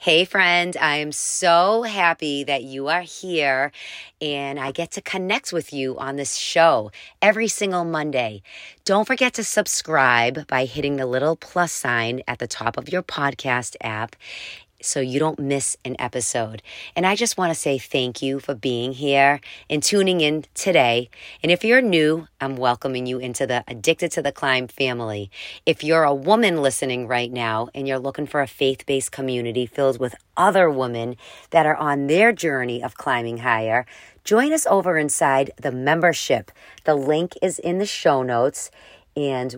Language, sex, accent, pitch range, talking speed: English, female, American, 130-170 Hz, 175 wpm